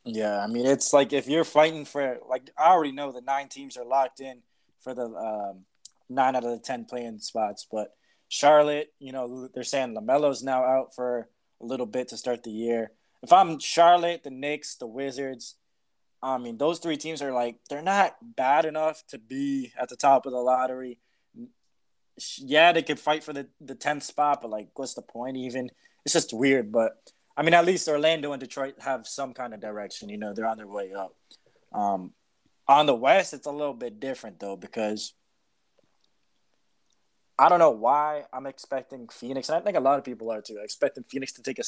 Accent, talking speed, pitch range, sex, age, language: American, 205 wpm, 120-145 Hz, male, 20-39, English